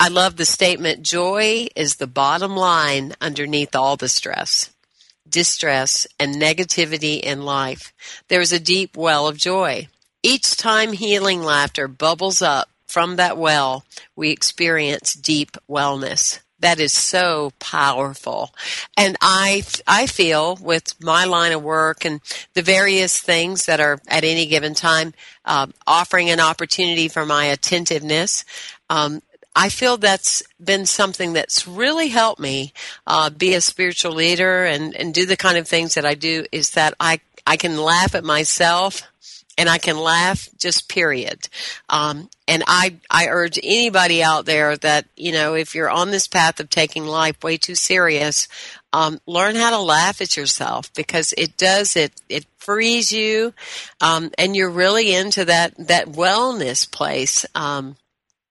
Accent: American